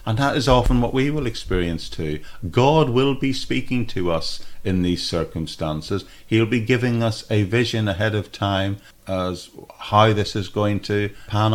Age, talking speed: 50-69, 175 wpm